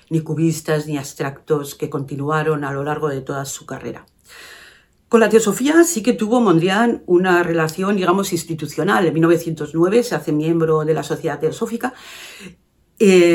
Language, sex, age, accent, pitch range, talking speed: Spanish, female, 50-69, Spanish, 155-190 Hz, 155 wpm